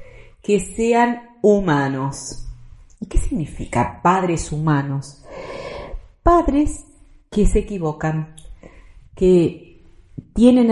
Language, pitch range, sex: Spanish, 150-215 Hz, female